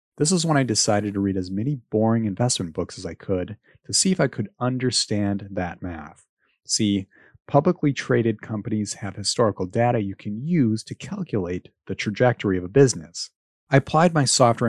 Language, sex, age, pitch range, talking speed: English, male, 30-49, 95-125 Hz, 180 wpm